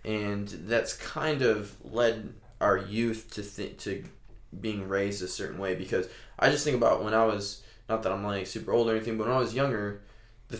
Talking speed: 205 wpm